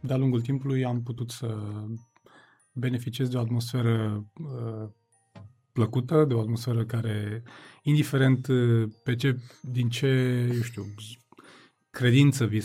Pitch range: 120-145 Hz